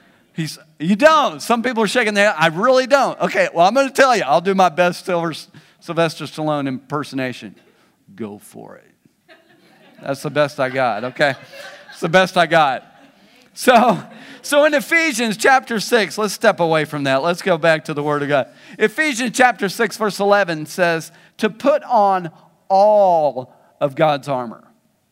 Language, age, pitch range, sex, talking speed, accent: English, 50-69, 160-210 Hz, male, 170 wpm, American